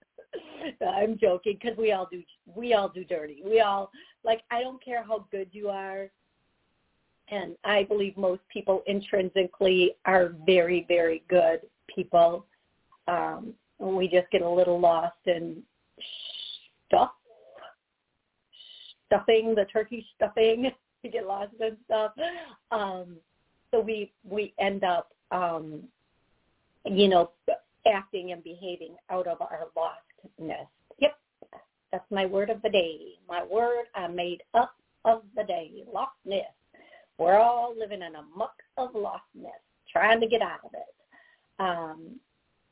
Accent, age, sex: American, 40-59, female